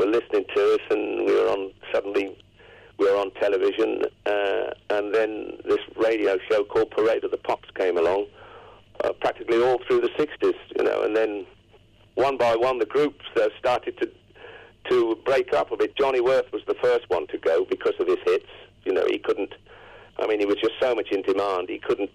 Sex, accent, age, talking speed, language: male, British, 50-69, 205 wpm, English